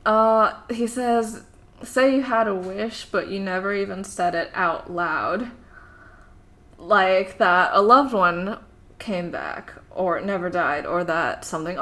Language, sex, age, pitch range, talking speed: English, female, 10-29, 185-240 Hz, 145 wpm